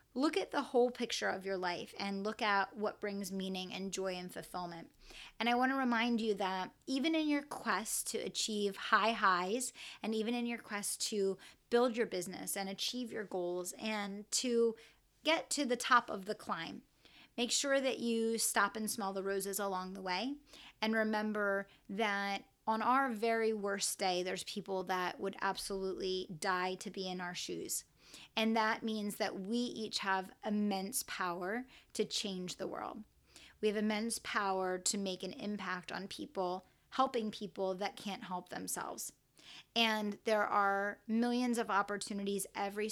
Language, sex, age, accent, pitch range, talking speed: English, female, 30-49, American, 190-230 Hz, 170 wpm